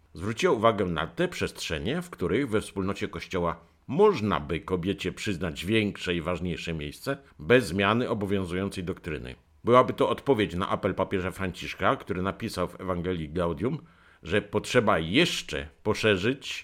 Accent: native